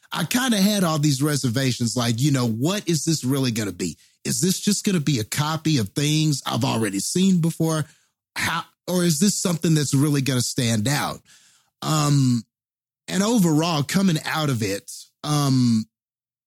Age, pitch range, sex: 30-49, 125-160 Hz, male